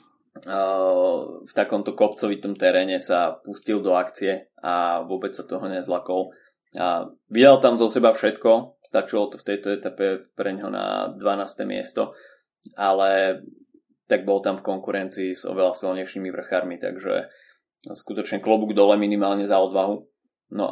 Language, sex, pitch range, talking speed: Slovak, male, 95-110 Hz, 130 wpm